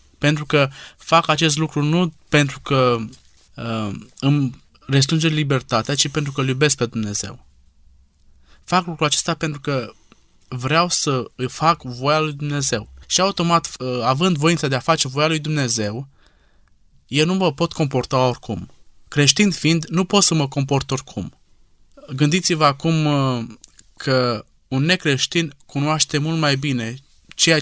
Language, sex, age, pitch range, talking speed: Romanian, male, 20-39, 125-155 Hz, 145 wpm